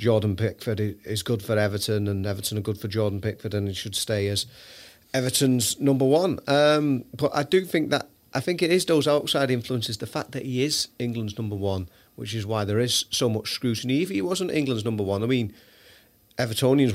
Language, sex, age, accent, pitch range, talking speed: English, male, 40-59, British, 105-120 Hz, 210 wpm